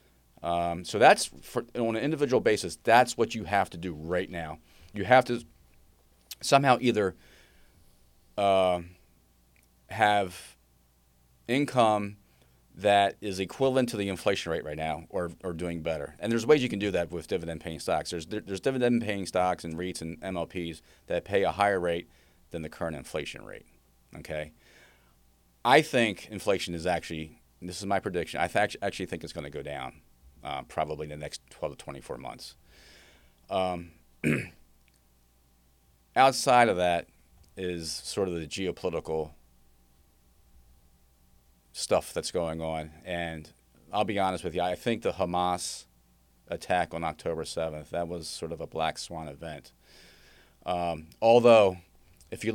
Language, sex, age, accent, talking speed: English, male, 30-49, American, 150 wpm